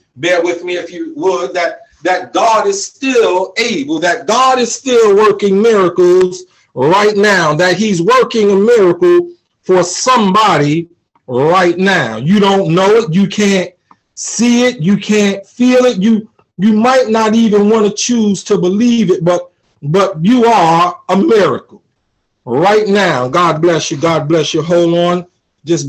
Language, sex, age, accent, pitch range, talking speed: English, male, 50-69, American, 150-200 Hz, 160 wpm